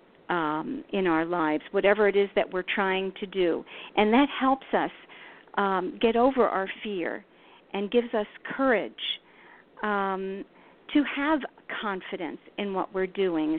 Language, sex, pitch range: English, female, 195-230 Hz